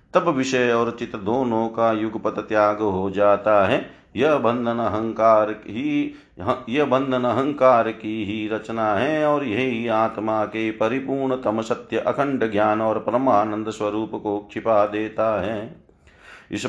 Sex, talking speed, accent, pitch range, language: male, 125 wpm, native, 110-140 Hz, Hindi